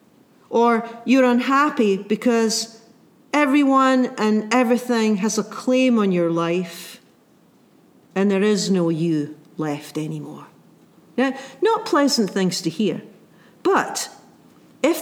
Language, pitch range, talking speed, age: English, 190-245 Hz, 110 wpm, 50-69